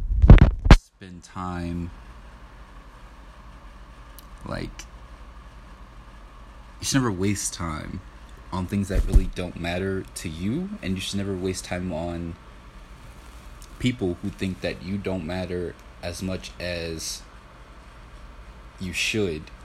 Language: English